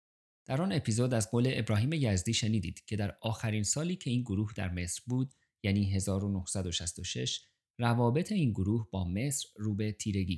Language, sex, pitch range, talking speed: Persian, male, 95-130 Hz, 160 wpm